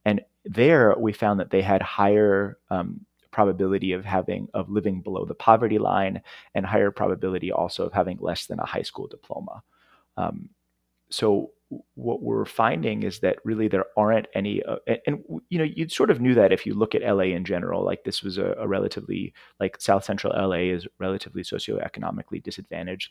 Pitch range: 90-105 Hz